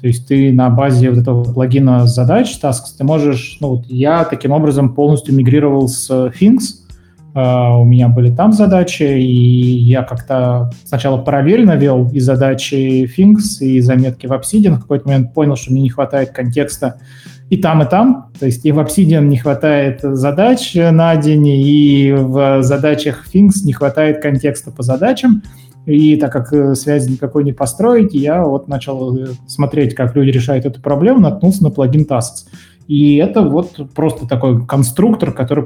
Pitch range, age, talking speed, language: 130-155 Hz, 20-39, 165 wpm, Russian